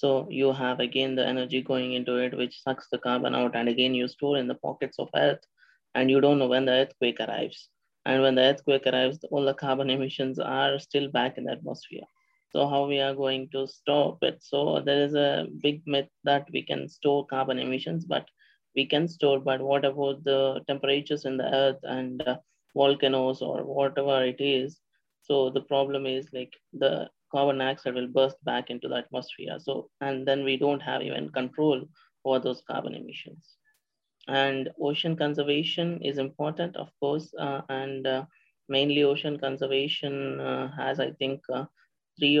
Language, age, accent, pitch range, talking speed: English, 20-39, Indian, 130-145 Hz, 185 wpm